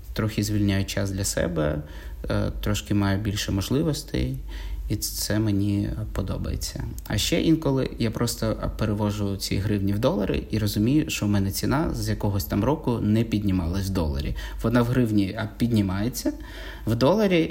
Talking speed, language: 145 wpm, Ukrainian